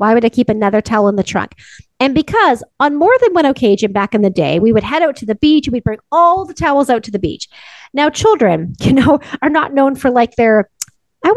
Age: 30-49